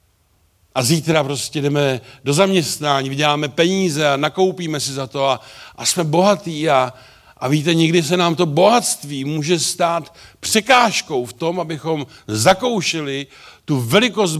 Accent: native